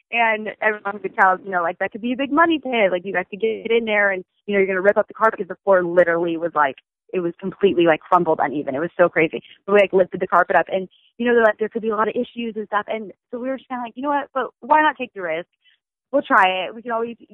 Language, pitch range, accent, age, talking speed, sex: English, 175-220 Hz, American, 20-39, 310 wpm, female